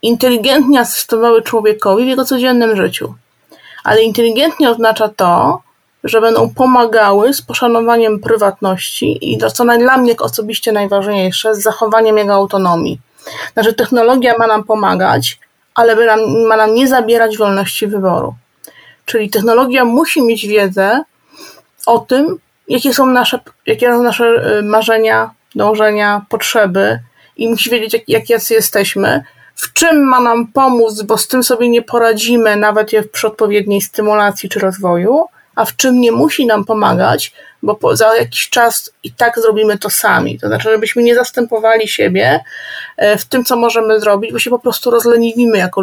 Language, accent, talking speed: Polish, native, 145 wpm